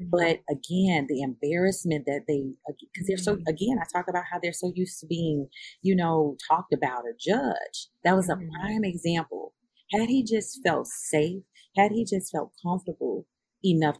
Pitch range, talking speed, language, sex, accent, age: 150-190 Hz, 175 wpm, English, female, American, 40-59